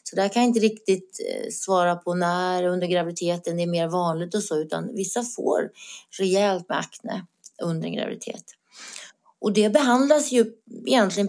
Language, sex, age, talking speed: Swedish, female, 30-49, 160 wpm